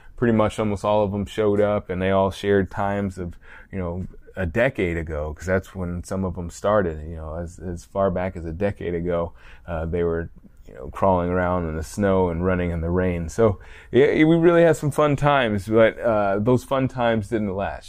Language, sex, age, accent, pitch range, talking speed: English, male, 20-39, American, 90-110 Hz, 220 wpm